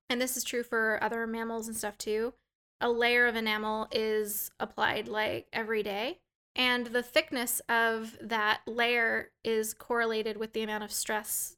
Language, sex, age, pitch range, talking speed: English, female, 20-39, 220-255 Hz, 165 wpm